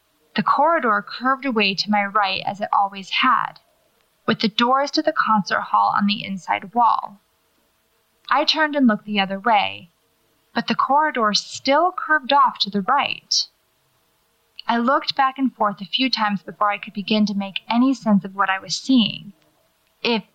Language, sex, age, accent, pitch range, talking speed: English, female, 20-39, American, 205-260 Hz, 175 wpm